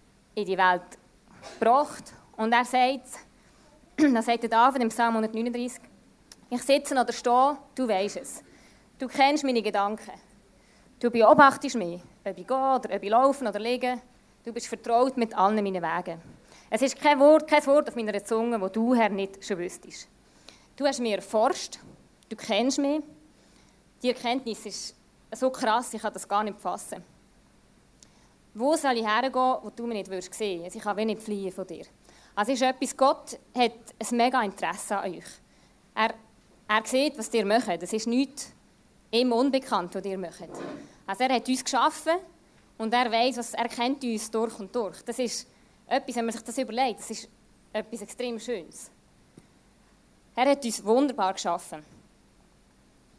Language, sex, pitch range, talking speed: German, female, 215-255 Hz, 165 wpm